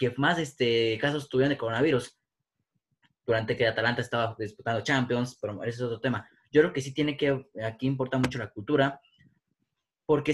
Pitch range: 115-140 Hz